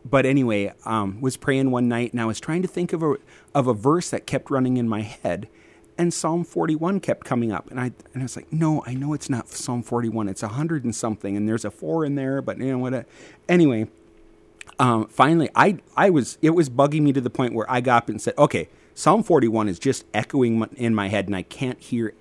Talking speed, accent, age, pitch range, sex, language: 250 wpm, American, 30-49, 105-130 Hz, male, English